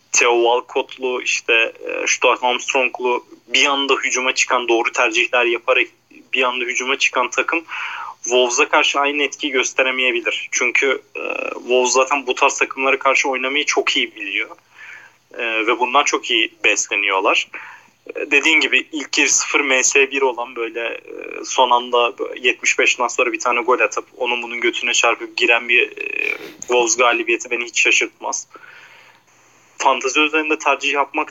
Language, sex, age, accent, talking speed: Turkish, male, 30-49, native, 140 wpm